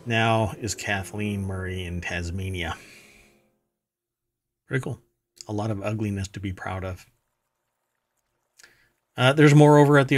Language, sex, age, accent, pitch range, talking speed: English, male, 40-59, American, 100-130 Hz, 130 wpm